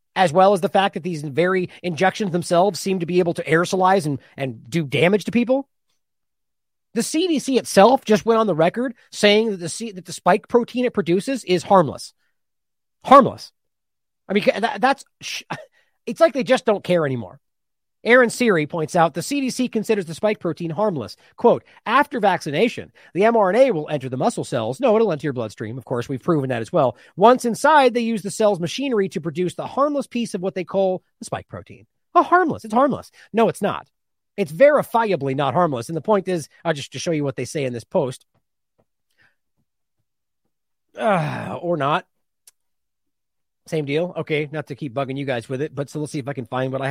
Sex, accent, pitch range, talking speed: male, American, 155-225 Hz, 200 wpm